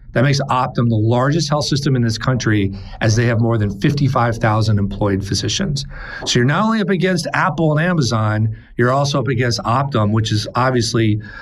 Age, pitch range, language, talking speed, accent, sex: 40-59, 110-140 Hz, English, 185 wpm, American, male